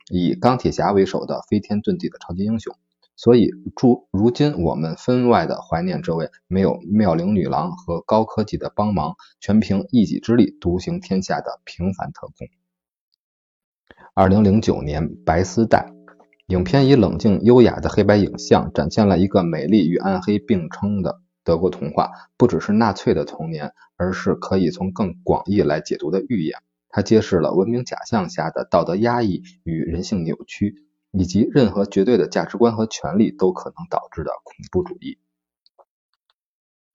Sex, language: male, Chinese